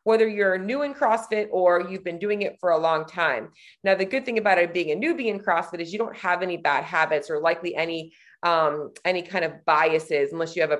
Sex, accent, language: female, American, English